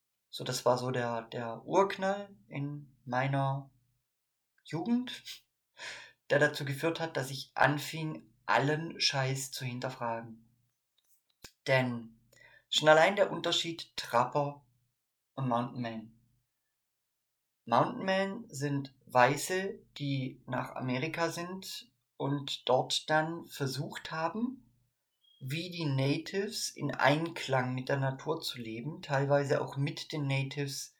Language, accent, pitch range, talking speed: German, German, 125-155 Hz, 110 wpm